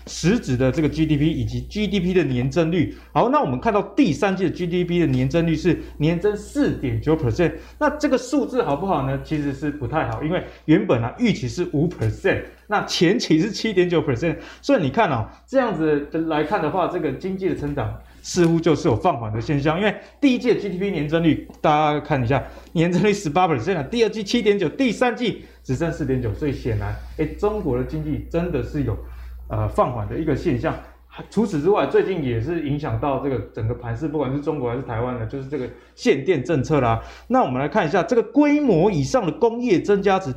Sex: male